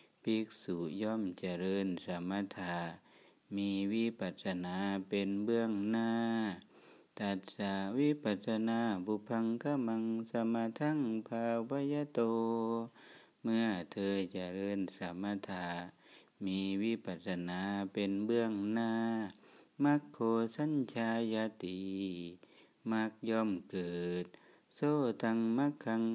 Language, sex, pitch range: Thai, male, 95-115 Hz